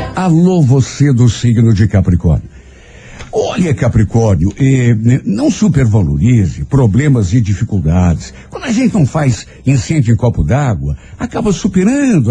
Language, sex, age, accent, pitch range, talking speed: Portuguese, male, 60-79, Brazilian, 110-165 Hz, 120 wpm